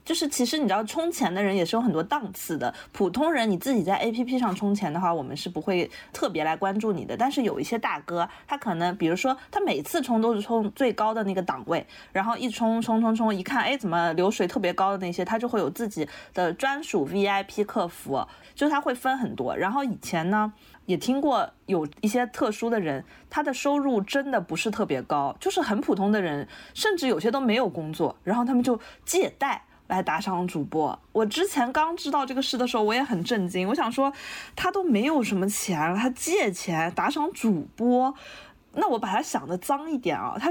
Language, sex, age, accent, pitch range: Chinese, female, 20-39, native, 190-270 Hz